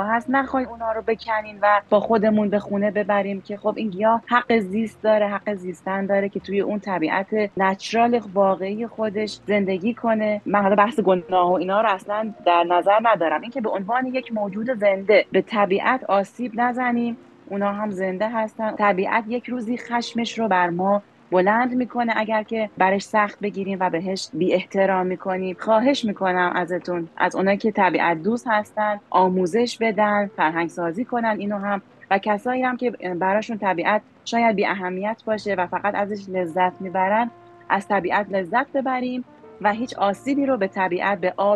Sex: female